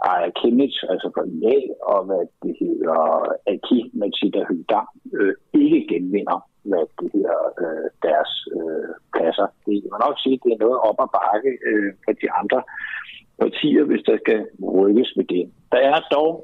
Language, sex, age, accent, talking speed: Danish, male, 60-79, native, 190 wpm